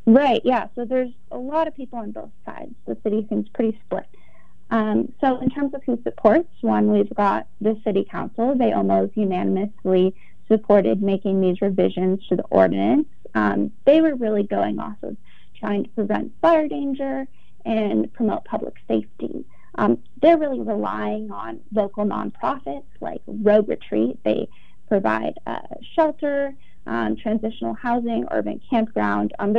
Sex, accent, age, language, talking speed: female, American, 30-49, English, 150 wpm